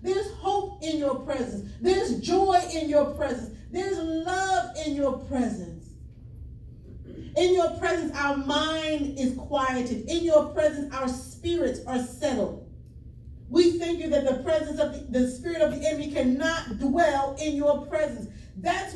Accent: American